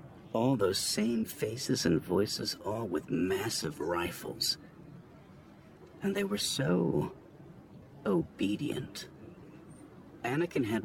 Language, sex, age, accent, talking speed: English, male, 50-69, American, 95 wpm